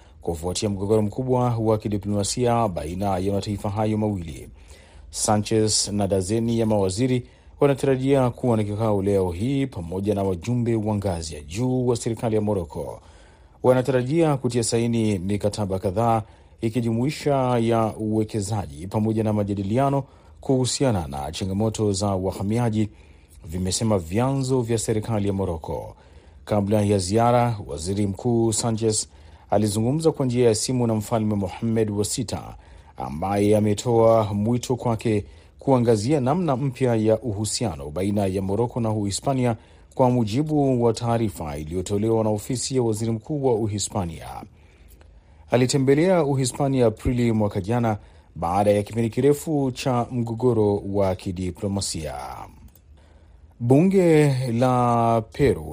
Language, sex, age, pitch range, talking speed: Swahili, male, 40-59, 95-120 Hz, 120 wpm